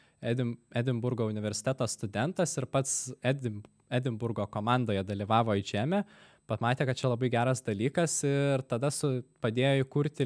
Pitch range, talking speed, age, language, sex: 110-140 Hz, 130 wpm, 20-39, English, male